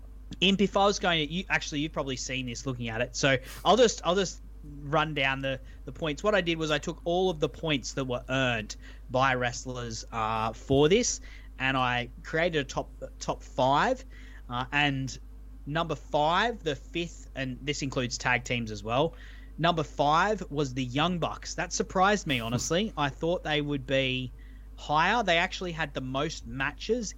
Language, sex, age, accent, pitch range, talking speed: English, male, 30-49, Australian, 115-150 Hz, 185 wpm